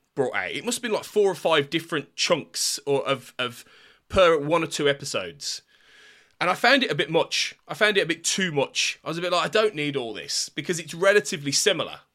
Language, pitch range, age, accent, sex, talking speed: English, 135-180 Hz, 20-39, British, male, 235 wpm